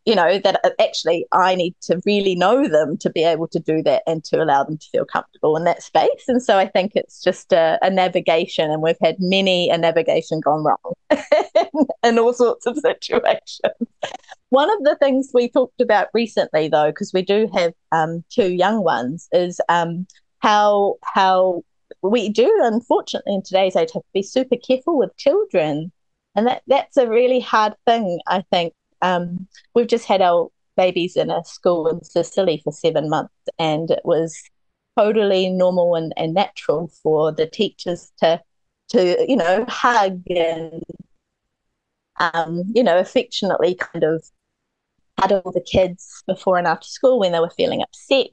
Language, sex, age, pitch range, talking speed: Italian, female, 30-49, 165-215 Hz, 175 wpm